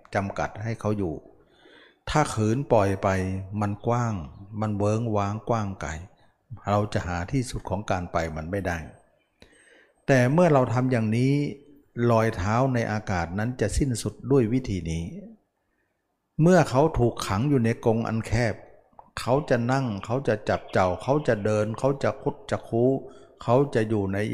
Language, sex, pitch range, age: Thai, male, 95-125 Hz, 60-79